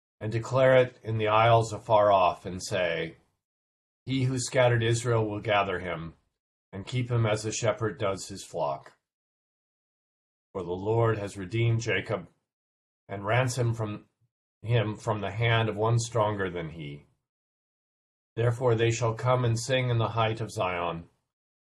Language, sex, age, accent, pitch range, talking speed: English, male, 40-59, American, 95-115 Hz, 150 wpm